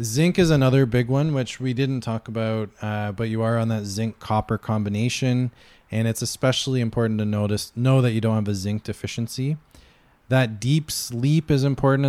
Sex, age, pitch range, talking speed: male, 20-39, 105-130 Hz, 190 wpm